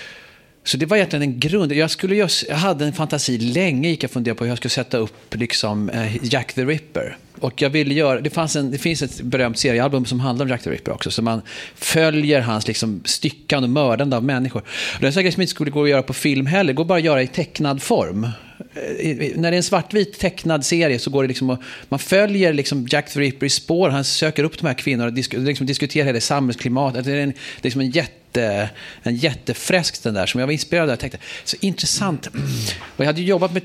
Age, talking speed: 40-59, 235 wpm